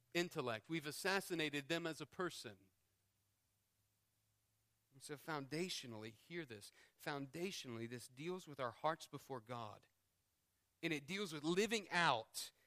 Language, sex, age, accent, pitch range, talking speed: English, male, 40-59, American, 115-190 Hz, 125 wpm